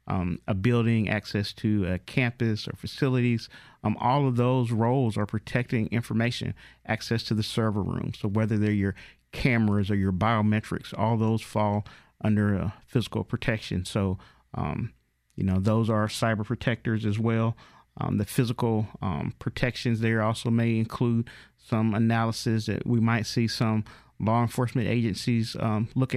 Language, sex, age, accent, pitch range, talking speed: English, male, 40-59, American, 110-120 Hz, 155 wpm